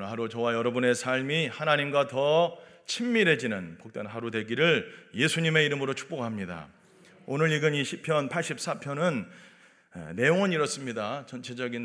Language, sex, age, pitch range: Korean, male, 40-59, 145-195 Hz